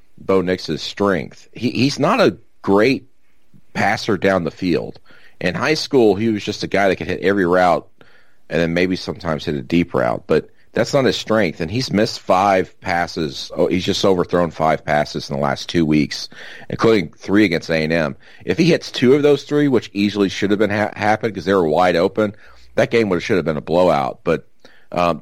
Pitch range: 85-105 Hz